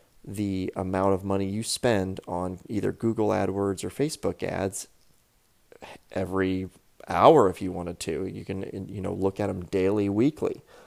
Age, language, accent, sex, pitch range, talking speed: 30-49, English, American, male, 95-110 Hz, 155 wpm